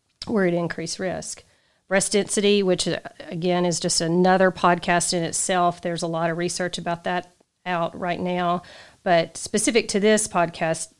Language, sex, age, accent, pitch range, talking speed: English, female, 40-59, American, 170-195 Hz, 160 wpm